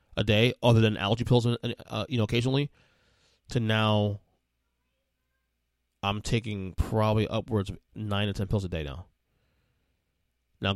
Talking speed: 145 wpm